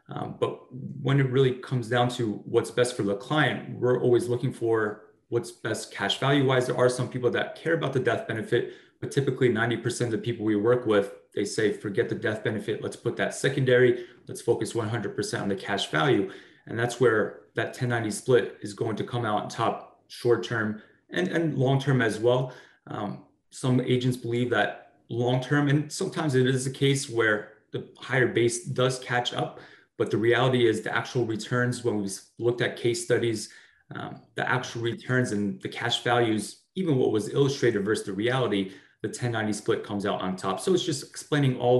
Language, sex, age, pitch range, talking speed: English, male, 20-39, 110-125 Hz, 195 wpm